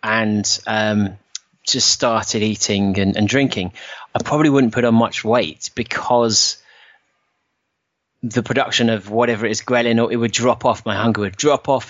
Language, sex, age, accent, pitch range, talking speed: English, male, 30-49, British, 105-120 Hz, 165 wpm